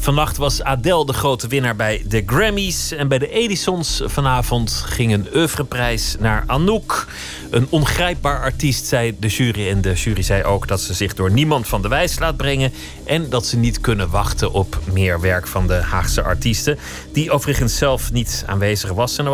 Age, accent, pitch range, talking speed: 30-49, Dutch, 100-145 Hz, 190 wpm